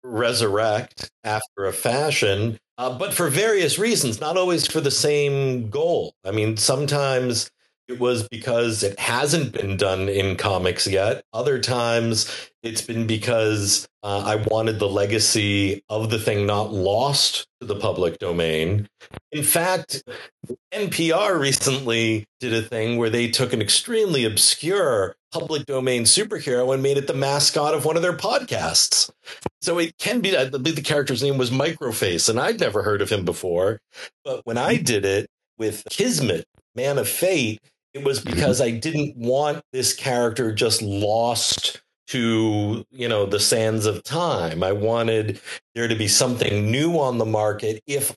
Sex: male